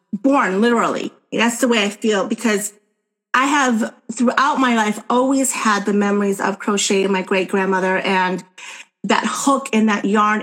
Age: 30-49